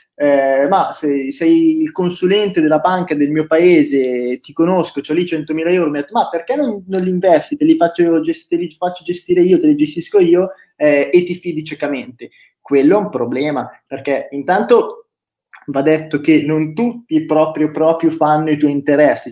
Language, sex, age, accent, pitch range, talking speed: Italian, male, 20-39, native, 145-185 Hz, 185 wpm